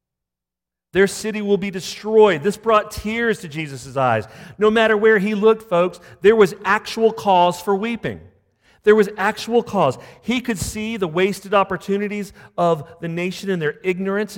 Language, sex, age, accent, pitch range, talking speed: English, male, 40-59, American, 165-225 Hz, 165 wpm